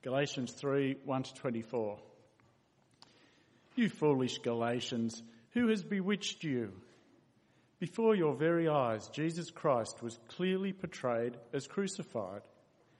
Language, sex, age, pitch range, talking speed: English, male, 50-69, 125-160 Hz, 105 wpm